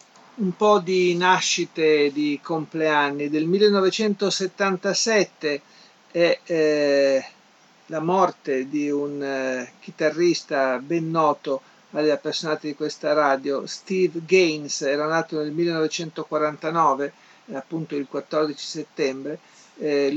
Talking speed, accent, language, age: 105 wpm, native, Italian, 50-69